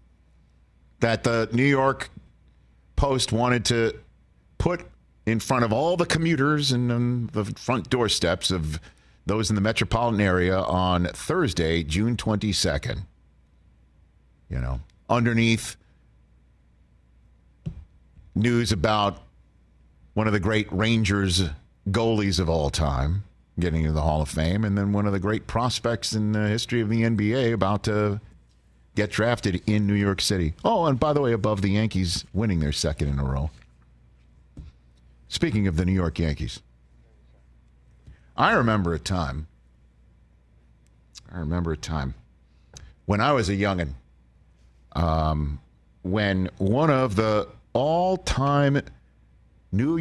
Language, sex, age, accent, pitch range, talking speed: English, male, 50-69, American, 70-110 Hz, 130 wpm